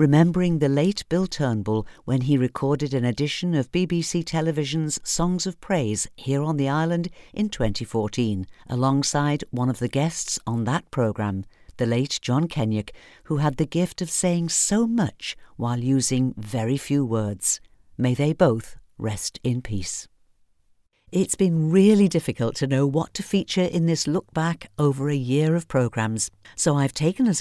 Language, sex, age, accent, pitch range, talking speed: English, female, 50-69, British, 125-175 Hz, 160 wpm